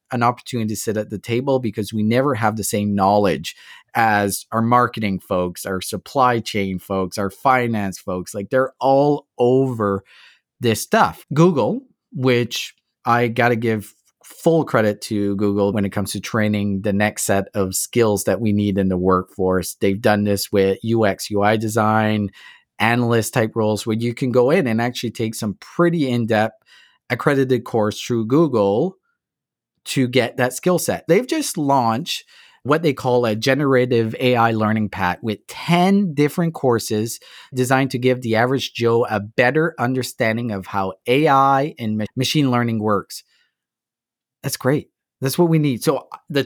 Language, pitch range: English, 105-135 Hz